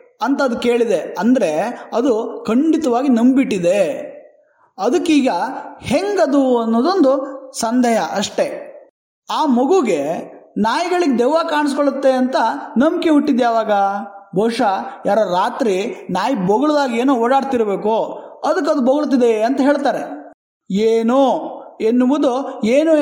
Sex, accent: male, native